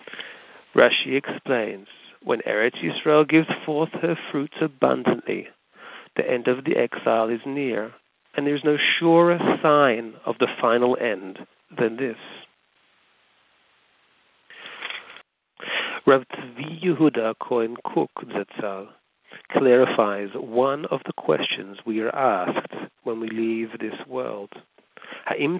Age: 40-59